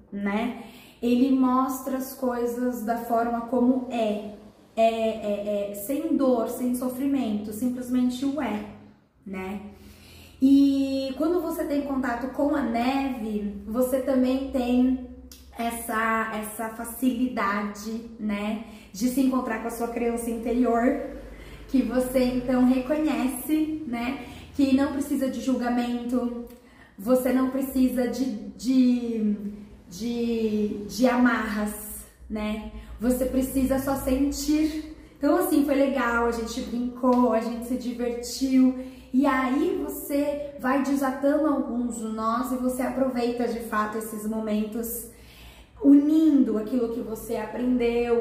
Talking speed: 120 wpm